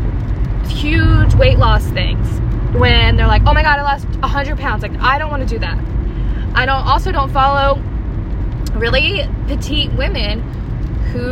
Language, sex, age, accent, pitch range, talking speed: English, female, 10-29, American, 105-115 Hz, 165 wpm